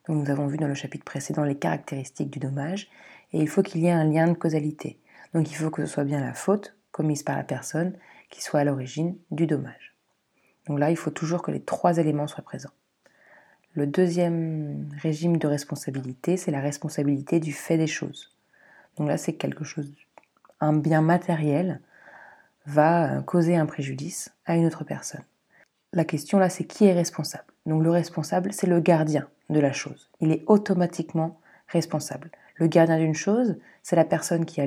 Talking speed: 185 wpm